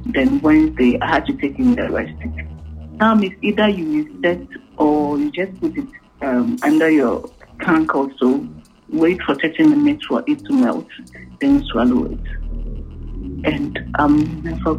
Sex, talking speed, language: female, 160 wpm, English